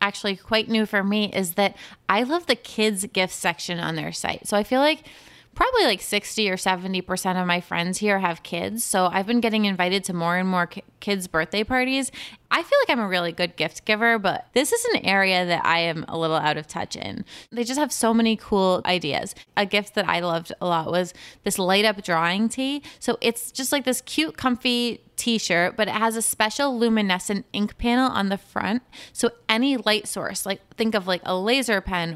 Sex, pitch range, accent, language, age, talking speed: female, 185-230 Hz, American, English, 20-39, 215 wpm